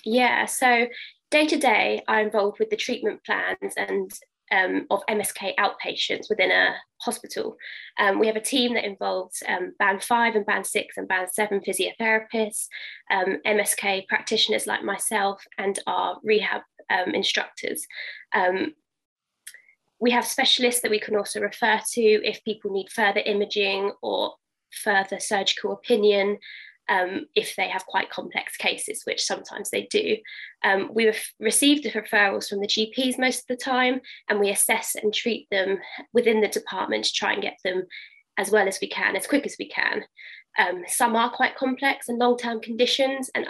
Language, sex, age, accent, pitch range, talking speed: English, female, 20-39, British, 205-260 Hz, 165 wpm